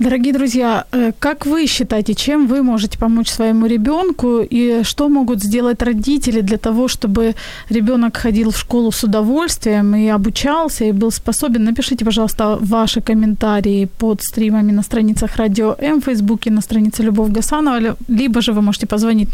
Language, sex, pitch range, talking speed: Ukrainian, female, 215-255 Hz, 160 wpm